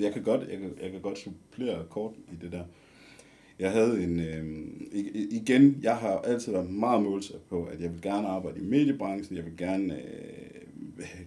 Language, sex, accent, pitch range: Danish, male, native, 85-120 Hz